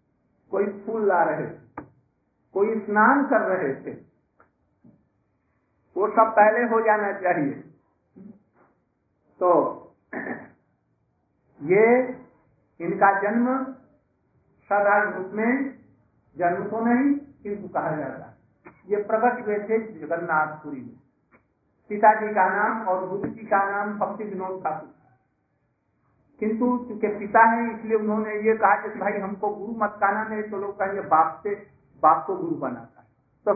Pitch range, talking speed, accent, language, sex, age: 185-225 Hz, 120 wpm, native, Hindi, male, 50-69